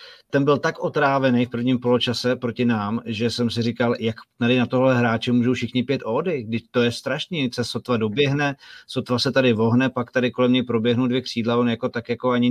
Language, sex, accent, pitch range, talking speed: Czech, male, native, 115-130 Hz, 215 wpm